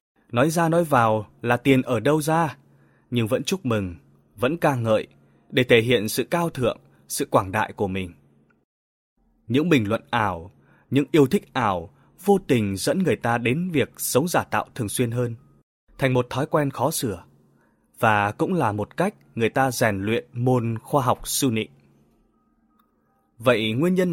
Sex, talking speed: male, 175 wpm